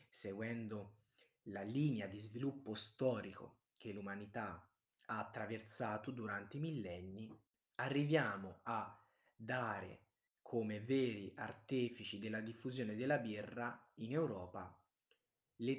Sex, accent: male, native